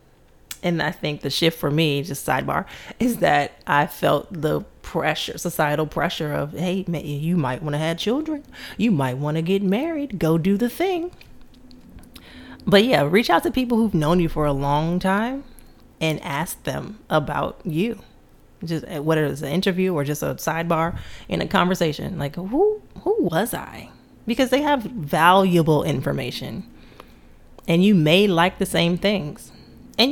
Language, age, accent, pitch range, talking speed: English, 30-49, American, 155-200 Hz, 165 wpm